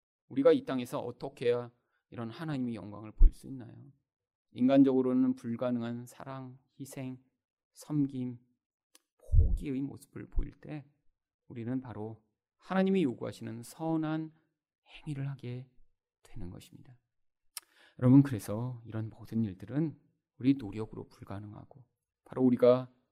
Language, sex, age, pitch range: Korean, male, 30-49, 110-160 Hz